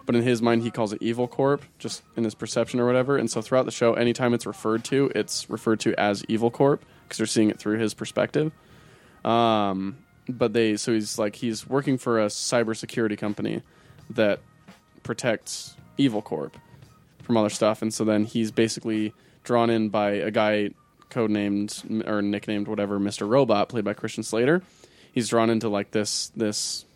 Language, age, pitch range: English, 20-39, 105-120 Hz